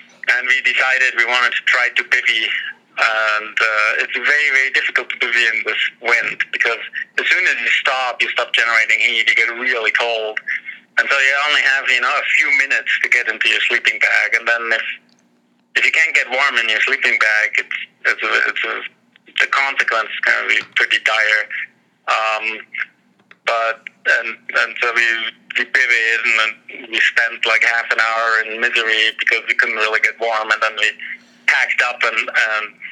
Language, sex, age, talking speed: English, male, 30-49, 190 wpm